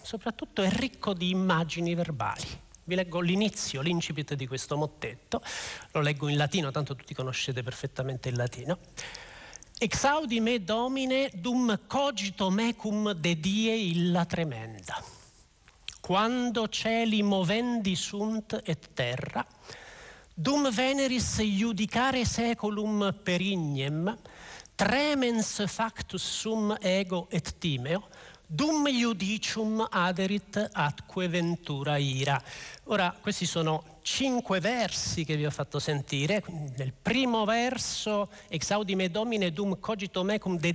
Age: 50-69